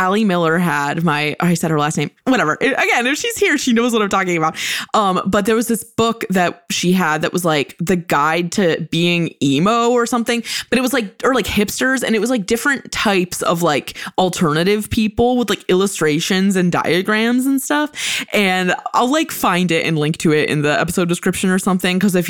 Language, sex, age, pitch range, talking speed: English, female, 20-39, 165-215 Hz, 215 wpm